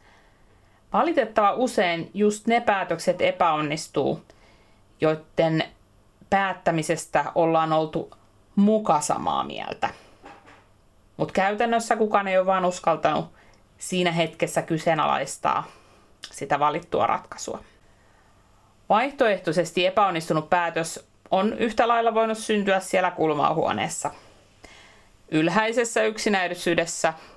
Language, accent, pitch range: Finnish, native, 145-200 Hz